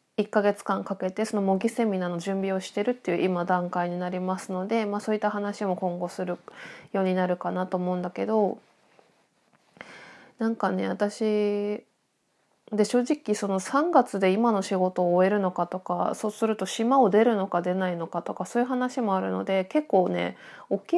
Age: 20-39